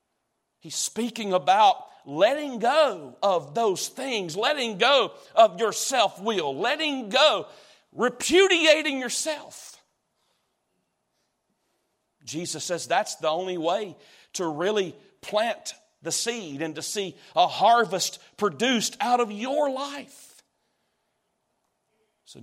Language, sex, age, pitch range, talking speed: English, male, 40-59, 175-255 Hz, 105 wpm